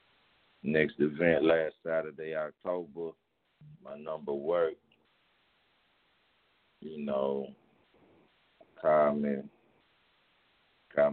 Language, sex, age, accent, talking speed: English, male, 50-69, American, 70 wpm